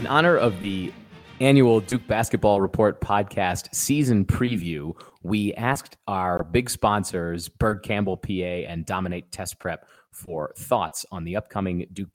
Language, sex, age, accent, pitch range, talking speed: English, male, 30-49, American, 90-115 Hz, 145 wpm